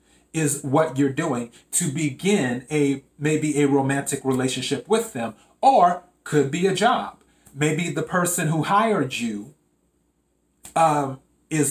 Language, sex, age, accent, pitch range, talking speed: English, male, 30-49, American, 130-160 Hz, 135 wpm